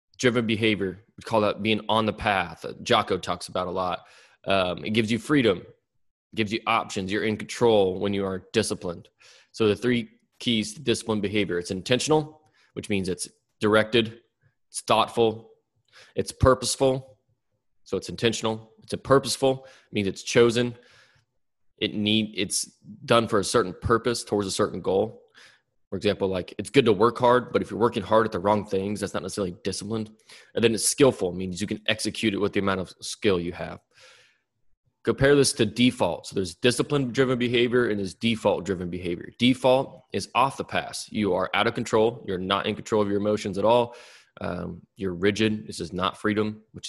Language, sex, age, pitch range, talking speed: English, male, 20-39, 100-120 Hz, 185 wpm